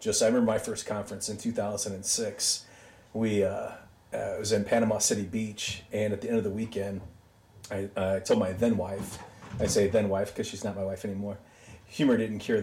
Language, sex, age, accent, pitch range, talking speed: English, male, 30-49, American, 100-120 Hz, 210 wpm